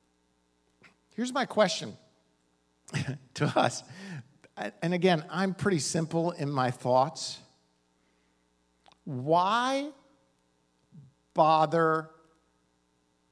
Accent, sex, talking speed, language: American, male, 70 wpm, English